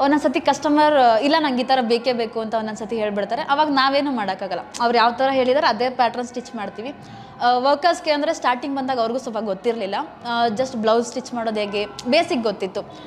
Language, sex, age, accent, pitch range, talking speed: Kannada, female, 20-39, native, 225-275 Hz, 170 wpm